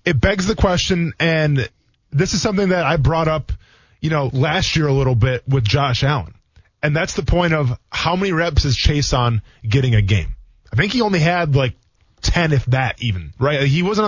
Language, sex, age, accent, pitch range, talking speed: English, male, 20-39, American, 125-180 Hz, 210 wpm